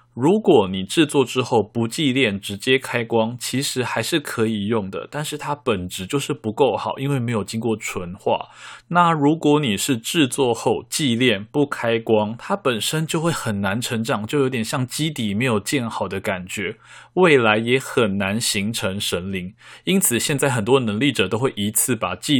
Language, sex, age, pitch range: Chinese, male, 20-39, 105-140 Hz